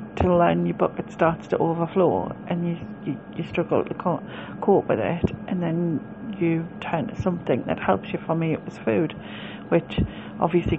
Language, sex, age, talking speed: English, female, 40-59, 170 wpm